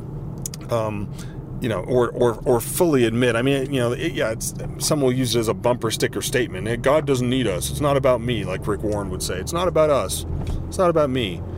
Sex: male